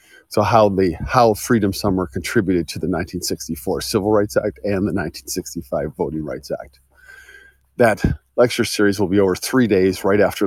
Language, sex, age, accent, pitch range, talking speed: English, male, 40-59, American, 90-110 Hz, 225 wpm